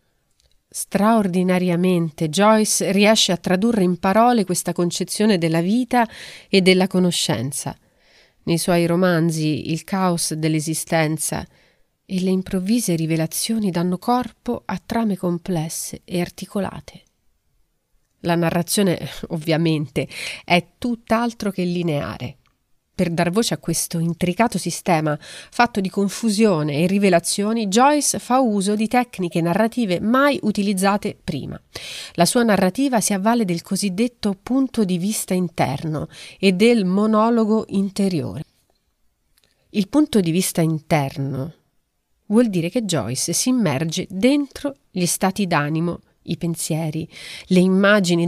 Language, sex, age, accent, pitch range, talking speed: Italian, female, 30-49, native, 170-215 Hz, 115 wpm